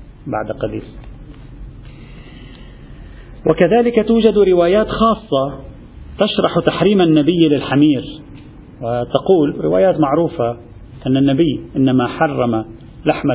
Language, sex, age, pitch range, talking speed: Arabic, male, 40-59, 120-155 Hz, 80 wpm